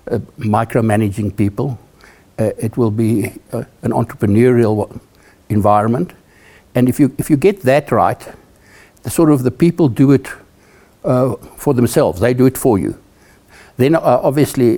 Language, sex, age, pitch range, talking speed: English, male, 60-79, 100-125 Hz, 155 wpm